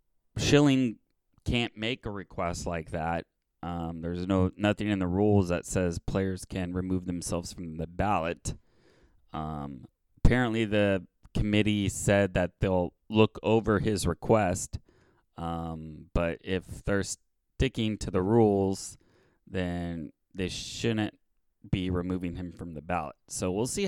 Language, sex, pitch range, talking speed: English, male, 85-105 Hz, 135 wpm